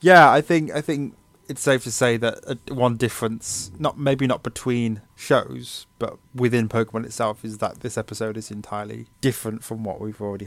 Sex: male